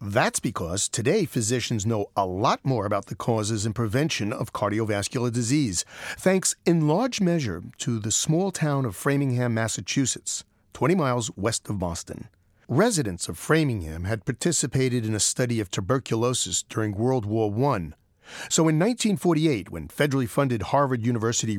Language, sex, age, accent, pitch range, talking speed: English, male, 40-59, American, 110-150 Hz, 150 wpm